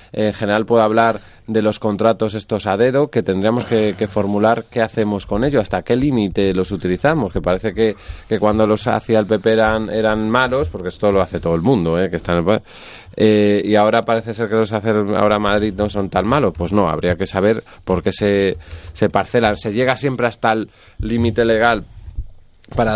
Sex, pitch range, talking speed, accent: male, 95-110 Hz, 210 wpm, Spanish